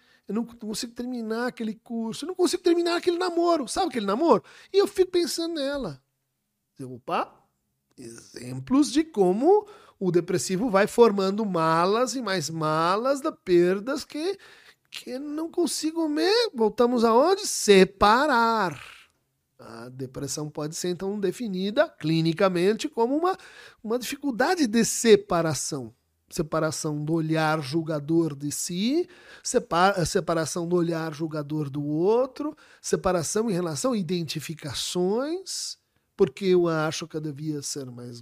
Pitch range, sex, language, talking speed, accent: 165-265 Hz, male, Portuguese, 125 wpm, Brazilian